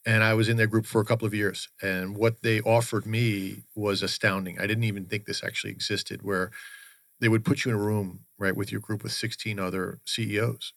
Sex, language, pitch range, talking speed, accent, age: male, English, 95-115 Hz, 230 wpm, American, 40-59